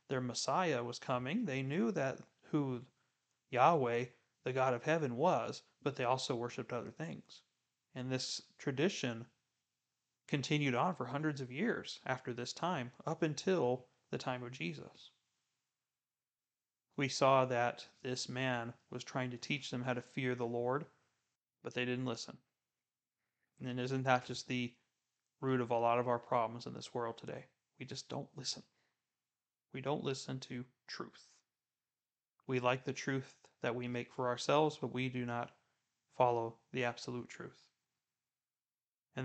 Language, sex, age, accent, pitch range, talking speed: English, male, 30-49, American, 120-135 Hz, 155 wpm